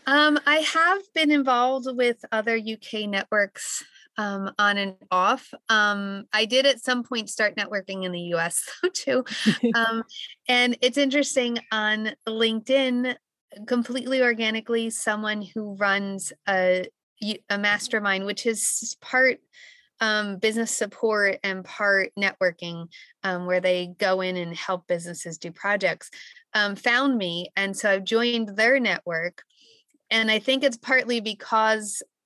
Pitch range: 190-240 Hz